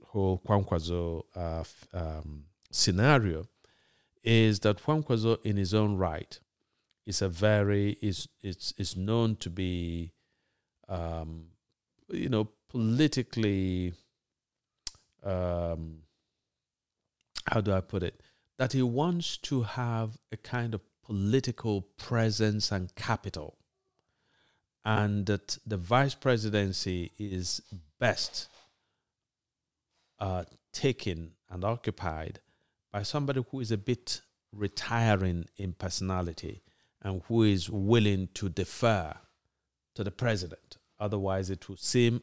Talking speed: 110 wpm